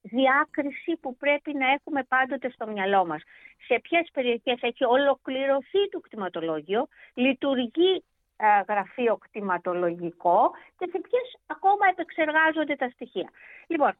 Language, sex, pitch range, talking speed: Greek, female, 220-325 Hz, 120 wpm